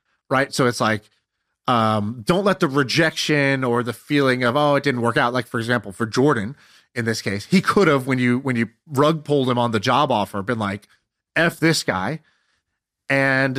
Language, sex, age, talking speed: English, male, 30-49, 205 wpm